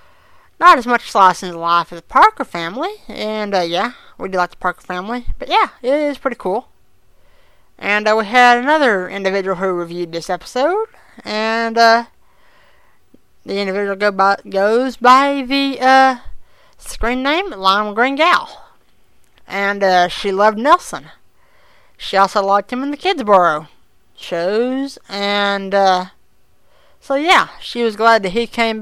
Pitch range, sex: 195-270 Hz, female